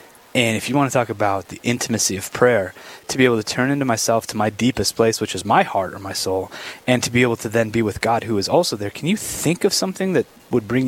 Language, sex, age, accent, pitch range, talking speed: English, male, 20-39, American, 110-155 Hz, 275 wpm